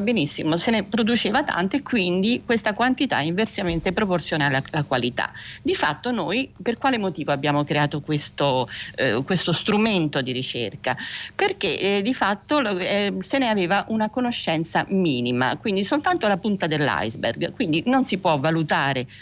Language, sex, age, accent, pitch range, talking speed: Italian, female, 50-69, native, 150-210 Hz, 145 wpm